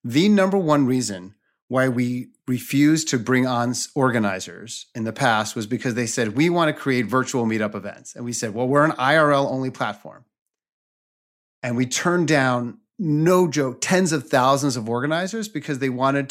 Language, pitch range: English, 125-155 Hz